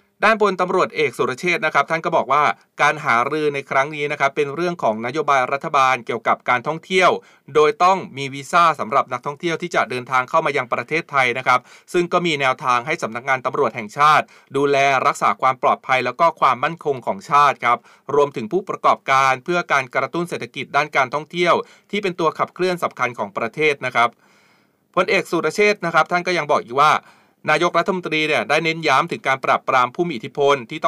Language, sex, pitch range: Thai, male, 130-165 Hz